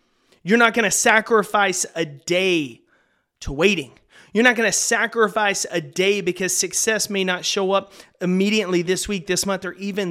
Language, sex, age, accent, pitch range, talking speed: English, male, 30-49, American, 165-205 Hz, 170 wpm